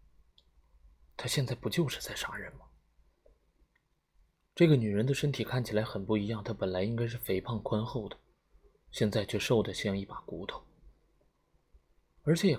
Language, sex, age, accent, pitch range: Chinese, male, 20-39, native, 95-125 Hz